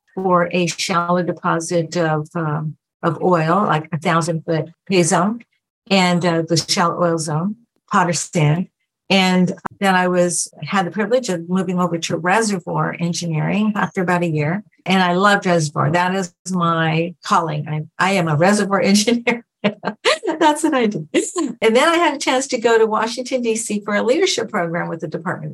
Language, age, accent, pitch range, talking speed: English, 50-69, American, 165-195 Hz, 175 wpm